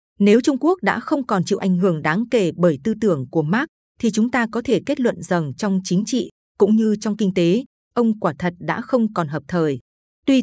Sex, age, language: female, 20-39, Vietnamese